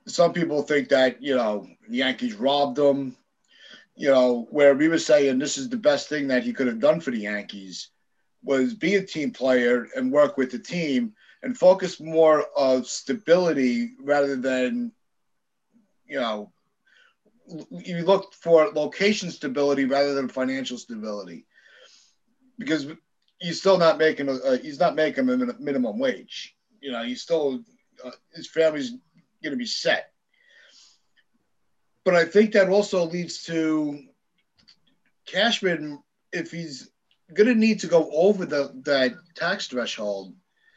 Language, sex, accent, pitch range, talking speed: English, male, American, 140-220 Hz, 145 wpm